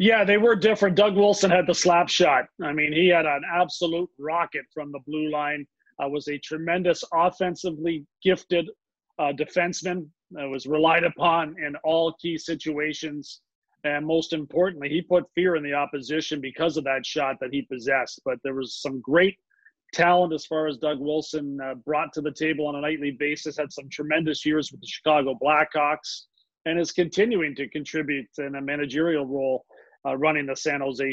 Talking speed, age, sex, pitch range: 185 wpm, 40-59, male, 145-170 Hz